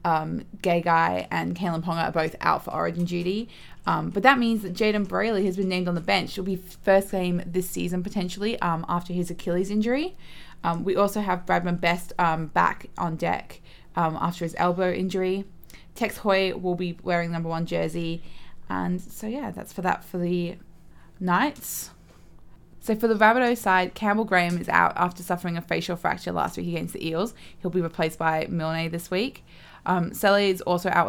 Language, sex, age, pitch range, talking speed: English, female, 20-39, 170-195 Hz, 195 wpm